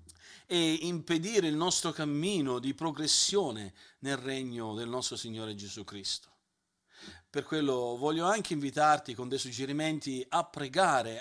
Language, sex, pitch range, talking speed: Italian, male, 120-165 Hz, 130 wpm